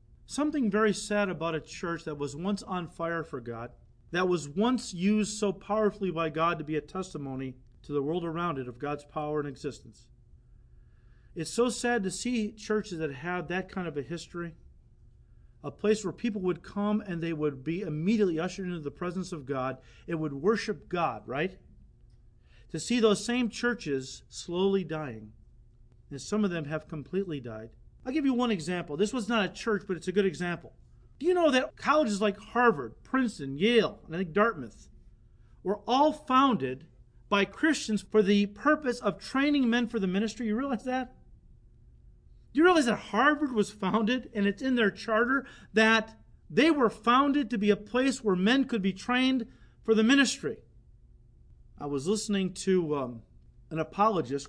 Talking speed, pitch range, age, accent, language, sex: 180 wpm, 155-225 Hz, 40-59, American, English, male